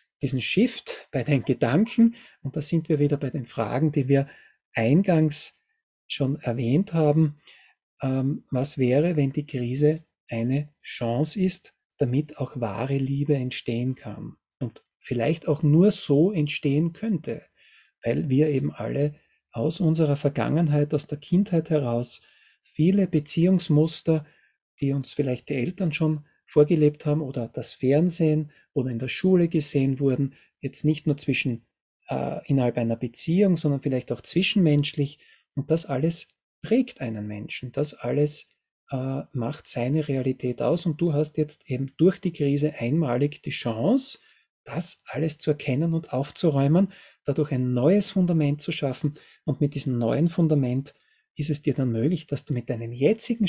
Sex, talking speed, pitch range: male, 150 wpm, 135-160 Hz